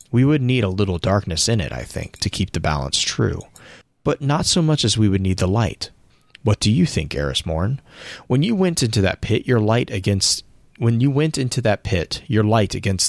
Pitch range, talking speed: 90-115 Hz, 220 wpm